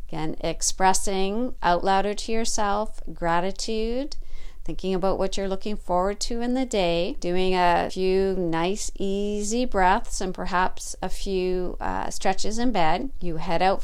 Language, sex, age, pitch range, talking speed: English, female, 40-59, 185-235 Hz, 150 wpm